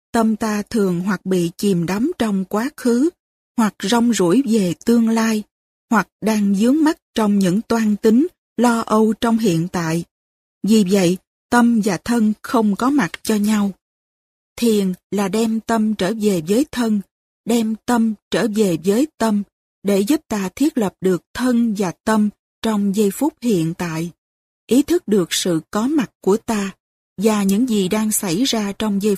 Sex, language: female, Korean